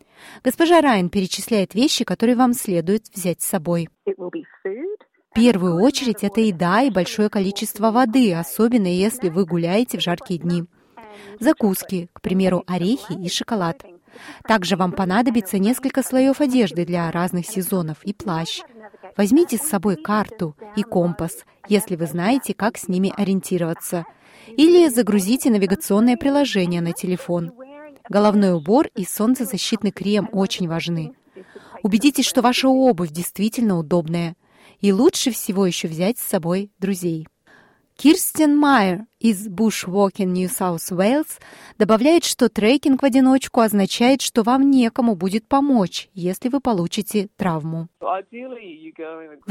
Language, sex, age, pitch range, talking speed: Russian, female, 20-39, 185-245 Hz, 130 wpm